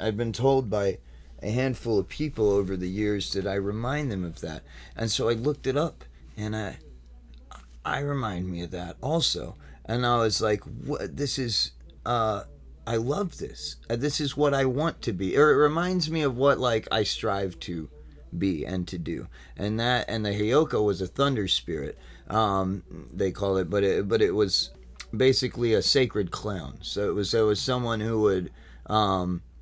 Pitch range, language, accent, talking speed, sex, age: 95-120 Hz, English, American, 190 wpm, male, 30-49